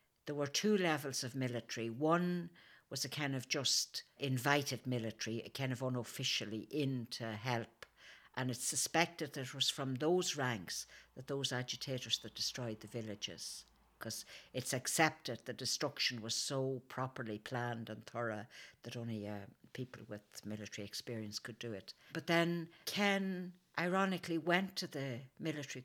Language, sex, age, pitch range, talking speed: English, female, 60-79, 125-155 Hz, 155 wpm